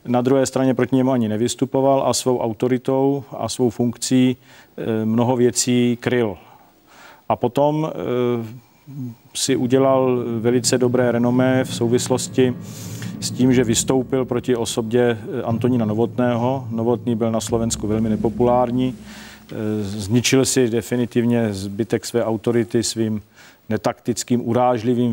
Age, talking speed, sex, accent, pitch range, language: 40-59, 115 wpm, male, native, 110-125 Hz, Czech